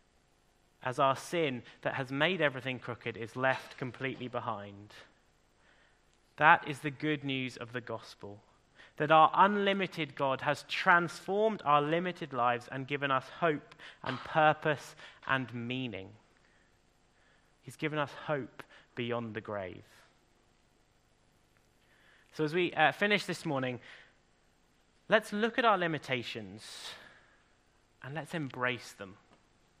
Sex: male